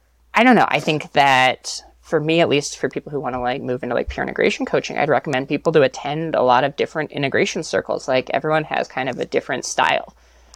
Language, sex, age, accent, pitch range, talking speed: English, female, 20-39, American, 130-155 Hz, 235 wpm